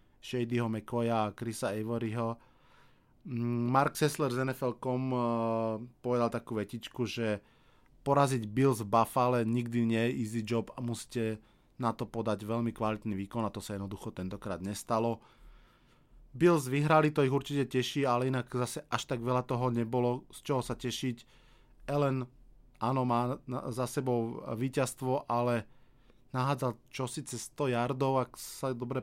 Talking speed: 140 wpm